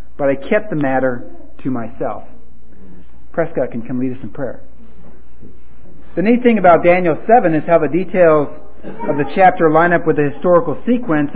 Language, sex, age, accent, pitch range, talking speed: English, male, 40-59, American, 145-190 Hz, 175 wpm